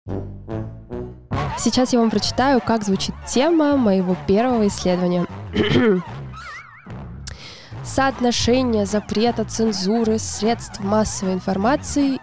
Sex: female